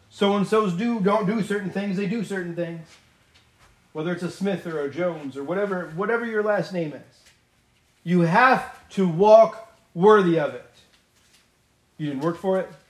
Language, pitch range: English, 120-180 Hz